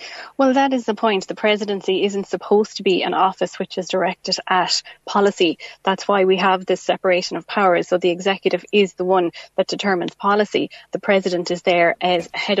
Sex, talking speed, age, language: female, 195 wpm, 20-39, English